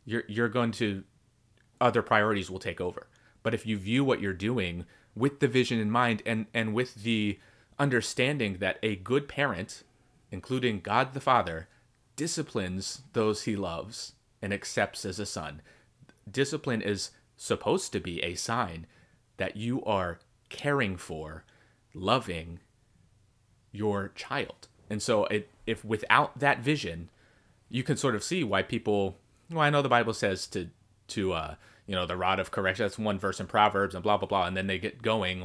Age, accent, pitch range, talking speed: 30-49, American, 95-120 Hz, 170 wpm